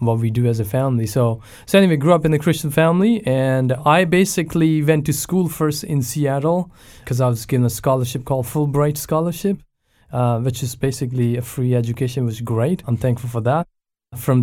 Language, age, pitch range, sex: English, 20-39, 120-145 Hz, male